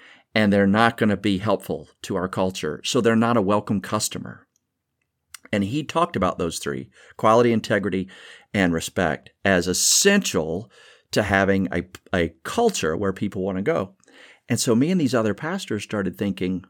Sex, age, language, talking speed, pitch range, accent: male, 50-69, English, 170 wpm, 95-120 Hz, American